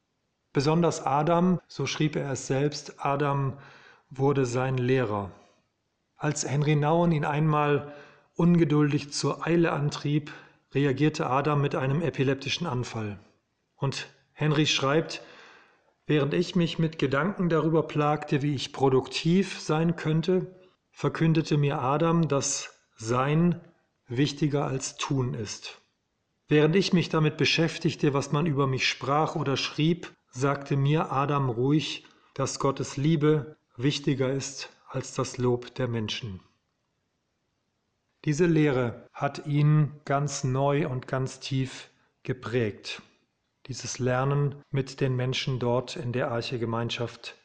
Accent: German